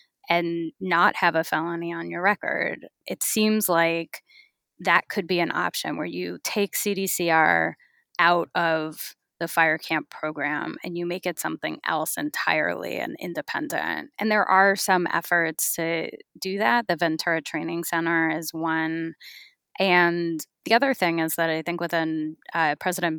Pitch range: 160-190 Hz